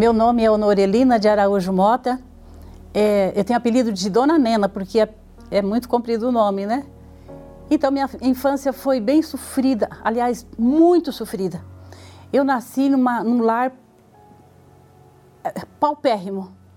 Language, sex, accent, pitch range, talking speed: Portuguese, female, Brazilian, 190-250 Hz, 135 wpm